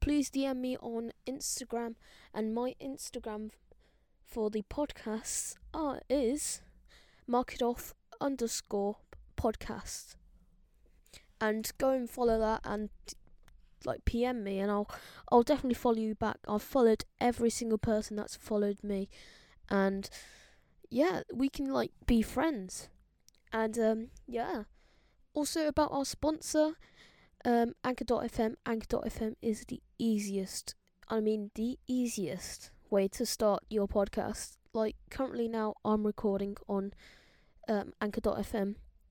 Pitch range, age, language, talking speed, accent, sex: 210-250 Hz, 10-29, English, 125 wpm, British, female